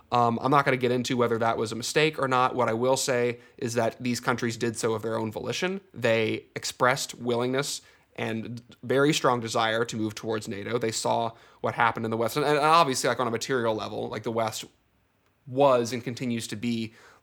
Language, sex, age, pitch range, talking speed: English, male, 20-39, 115-130 Hz, 215 wpm